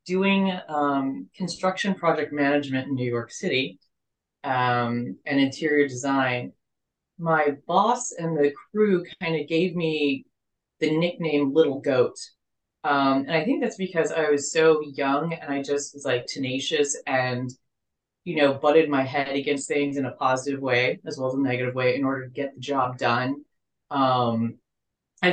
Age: 30-49